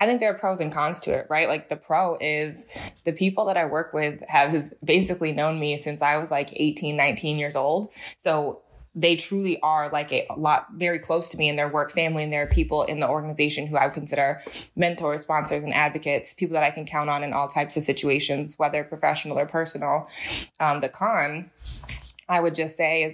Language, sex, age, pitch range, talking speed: English, female, 20-39, 145-170 Hz, 220 wpm